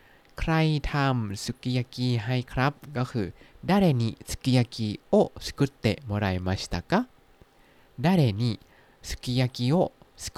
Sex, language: male, Thai